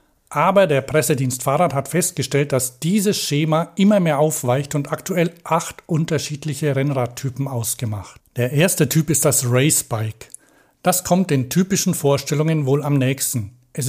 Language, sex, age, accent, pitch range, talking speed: German, male, 60-79, German, 130-170 Hz, 145 wpm